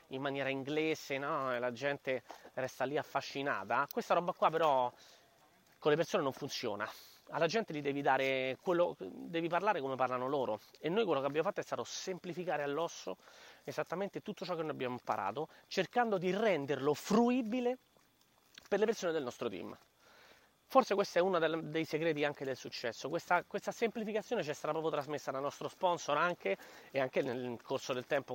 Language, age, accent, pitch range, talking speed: Italian, 30-49, native, 150-215 Hz, 175 wpm